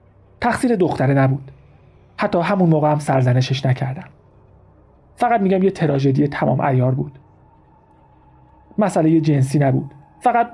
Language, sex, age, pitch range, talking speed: Persian, male, 40-59, 130-165 Hz, 120 wpm